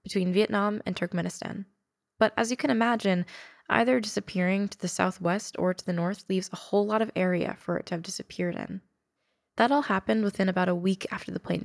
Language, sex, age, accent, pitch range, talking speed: English, female, 10-29, American, 180-210 Hz, 205 wpm